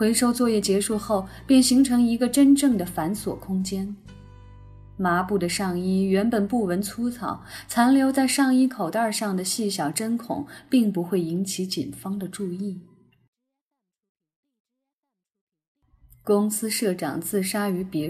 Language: Chinese